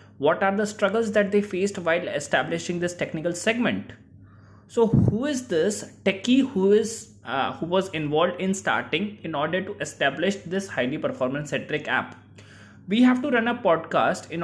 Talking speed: 170 wpm